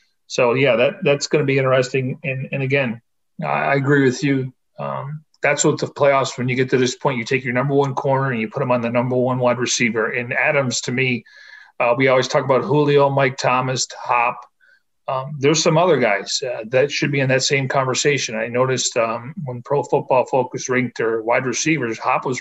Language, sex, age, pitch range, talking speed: English, male, 40-59, 125-150 Hz, 215 wpm